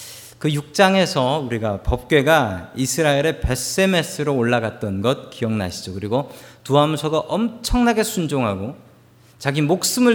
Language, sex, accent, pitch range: Korean, male, native, 120-180 Hz